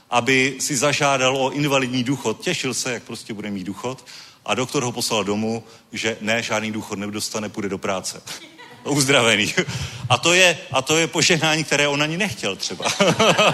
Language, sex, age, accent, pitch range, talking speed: Czech, male, 40-59, native, 130-180 Hz, 165 wpm